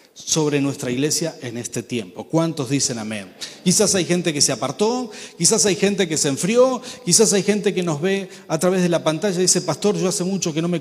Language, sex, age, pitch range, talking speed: Spanish, male, 40-59, 155-220 Hz, 230 wpm